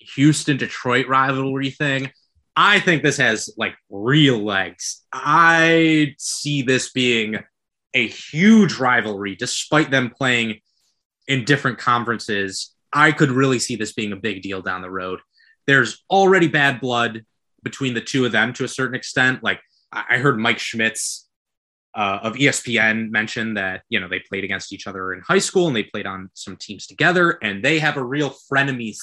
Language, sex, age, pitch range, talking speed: English, male, 20-39, 110-145 Hz, 170 wpm